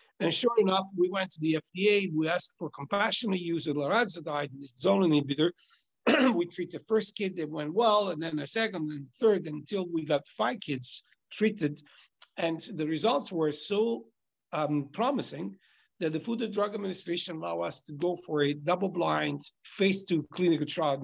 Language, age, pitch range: English, 60-79, 150-195 Hz